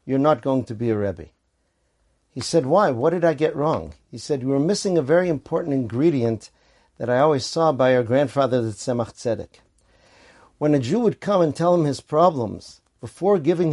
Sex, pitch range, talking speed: male, 120-155 Hz, 205 wpm